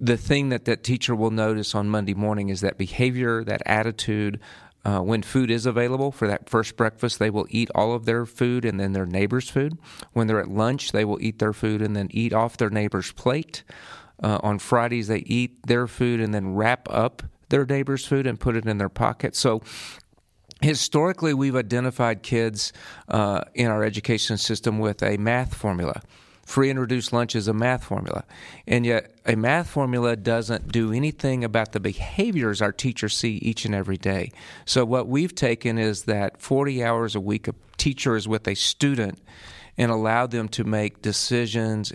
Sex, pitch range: male, 105-125 Hz